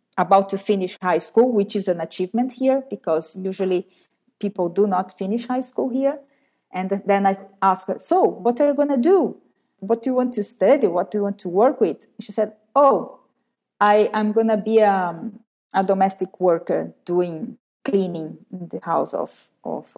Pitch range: 185-235 Hz